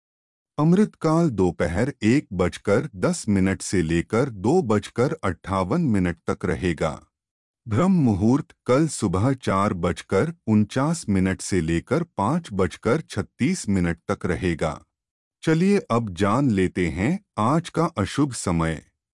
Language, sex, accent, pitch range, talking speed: Hindi, male, native, 90-145 Hz, 120 wpm